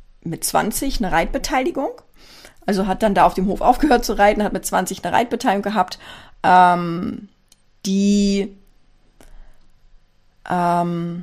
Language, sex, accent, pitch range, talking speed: German, female, German, 195-245 Hz, 125 wpm